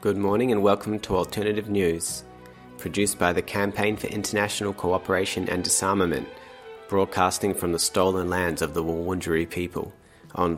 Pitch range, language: 90-105 Hz, English